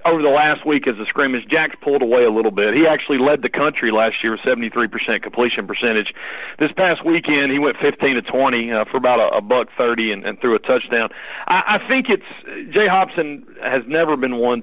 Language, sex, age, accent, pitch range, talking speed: English, male, 40-59, American, 120-150 Hz, 205 wpm